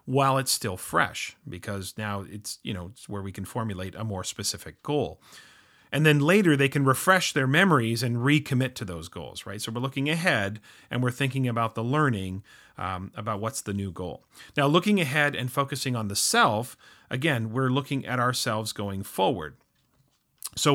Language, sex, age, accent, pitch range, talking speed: English, male, 40-59, American, 105-140 Hz, 185 wpm